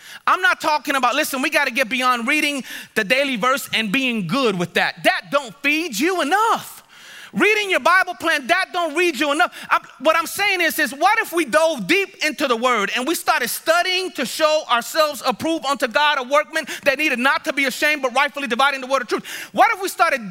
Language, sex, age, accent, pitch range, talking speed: English, male, 30-49, American, 250-340 Hz, 220 wpm